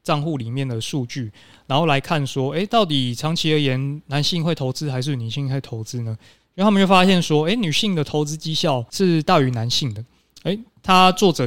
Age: 20-39